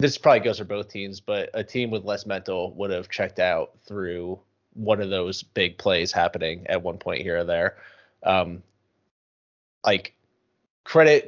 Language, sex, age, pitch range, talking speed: English, male, 20-39, 95-115 Hz, 170 wpm